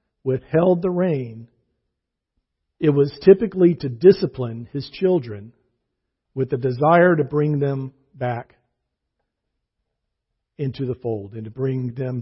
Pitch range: 120-160 Hz